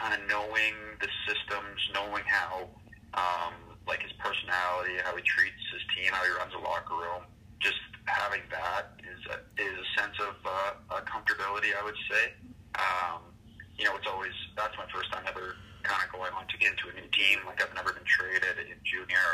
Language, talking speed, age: English, 200 wpm, 30-49